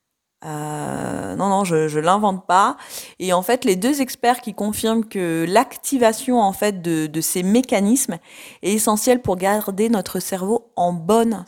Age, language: 30-49, French